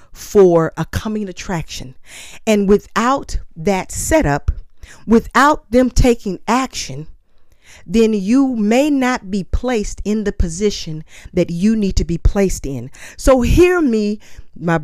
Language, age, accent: English, 40-59, American